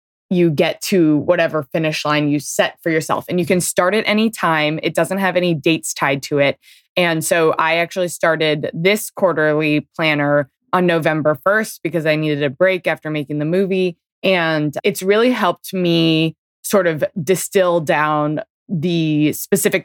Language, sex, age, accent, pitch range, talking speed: English, female, 20-39, American, 150-180 Hz, 170 wpm